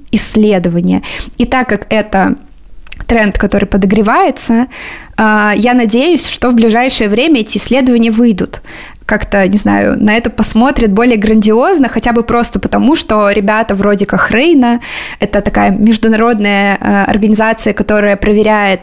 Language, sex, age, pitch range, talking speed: Russian, female, 20-39, 200-230 Hz, 125 wpm